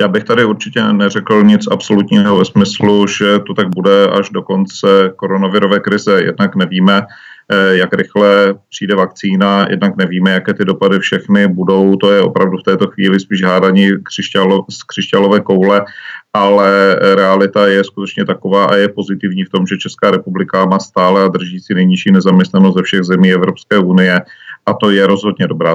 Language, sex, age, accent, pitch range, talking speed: Czech, male, 40-59, native, 95-100 Hz, 170 wpm